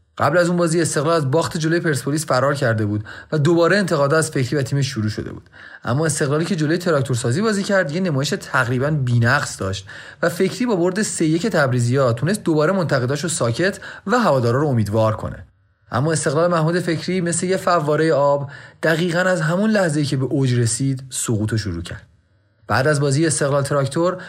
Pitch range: 120-175 Hz